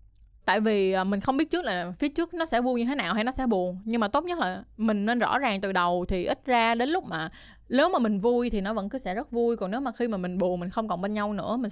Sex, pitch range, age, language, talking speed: female, 200-250 Hz, 20-39, Vietnamese, 310 wpm